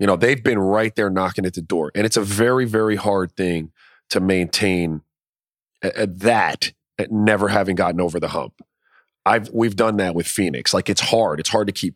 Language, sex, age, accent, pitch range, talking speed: English, male, 30-49, American, 90-110 Hz, 210 wpm